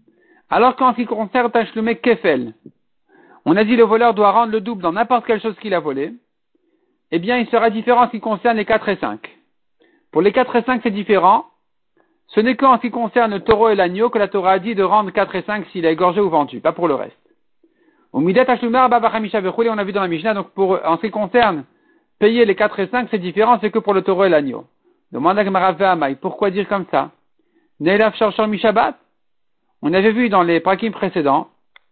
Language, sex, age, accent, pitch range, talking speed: French, male, 50-69, French, 190-235 Hz, 210 wpm